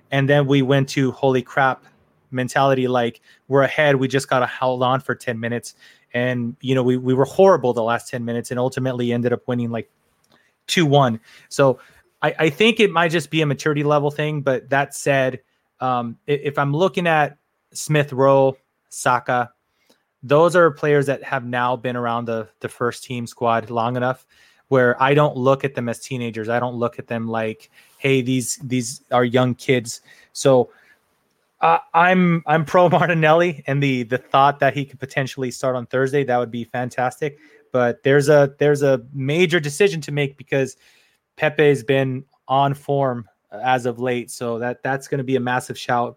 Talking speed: 185 wpm